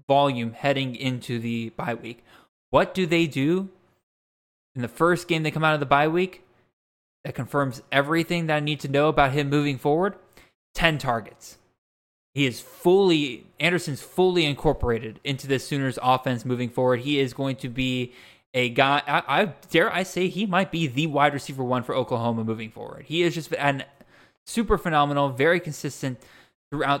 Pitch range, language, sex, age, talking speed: 130-160 Hz, English, male, 20-39, 175 wpm